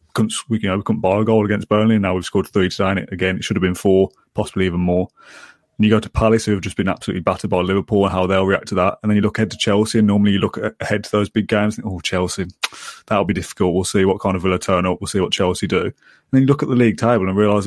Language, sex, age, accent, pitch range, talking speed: English, male, 20-39, British, 95-110 Hz, 300 wpm